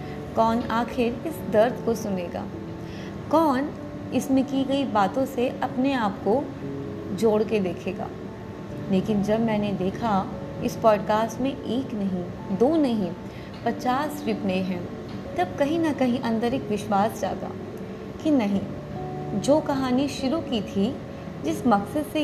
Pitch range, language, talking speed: 205-270 Hz, Hindi, 135 wpm